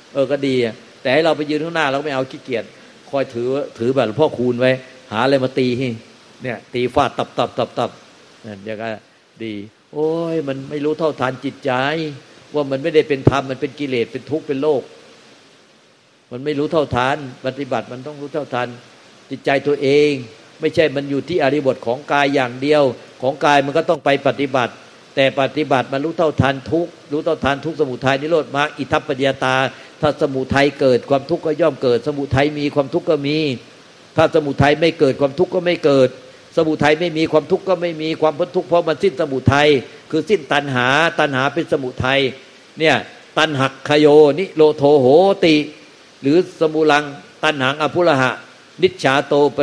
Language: Thai